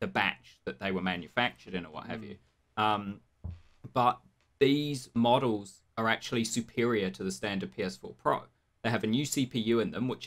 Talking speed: 180 wpm